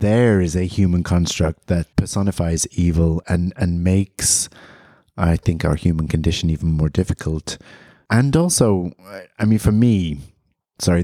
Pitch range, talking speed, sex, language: 80-100 Hz, 140 wpm, male, English